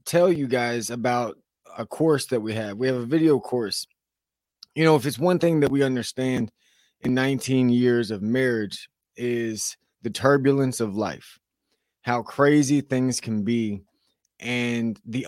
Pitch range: 115-135 Hz